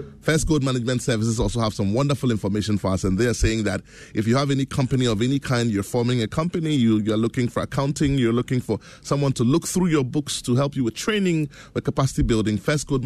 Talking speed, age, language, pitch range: 240 wpm, 20-39, English, 105-135 Hz